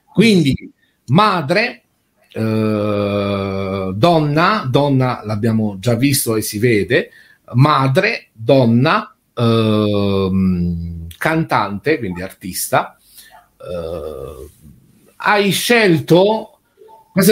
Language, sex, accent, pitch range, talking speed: Italian, male, native, 105-165 Hz, 75 wpm